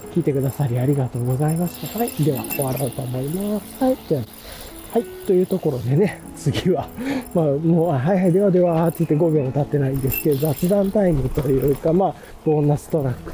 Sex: male